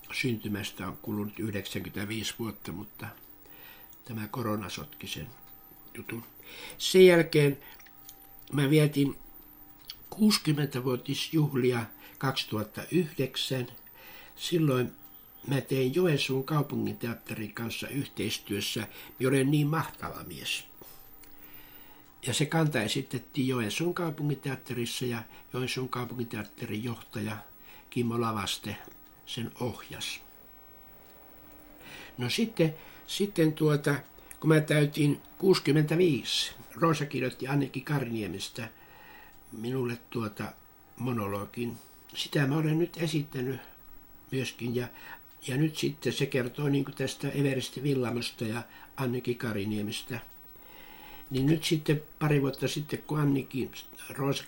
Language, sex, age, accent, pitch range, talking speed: Finnish, male, 60-79, native, 115-150 Hz, 95 wpm